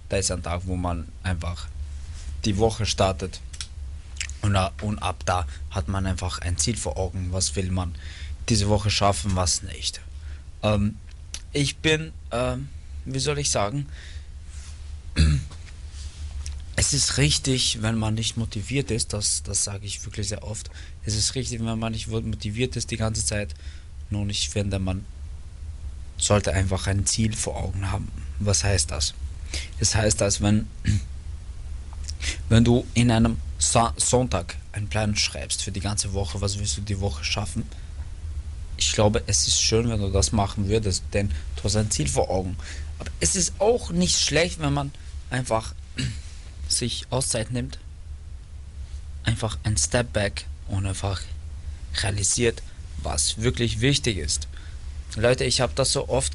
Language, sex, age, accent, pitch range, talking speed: German, male, 20-39, German, 75-105 Hz, 155 wpm